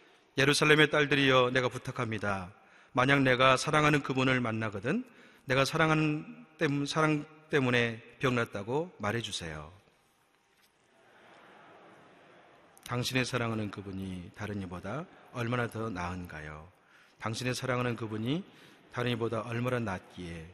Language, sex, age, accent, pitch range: Korean, male, 30-49, native, 105-135 Hz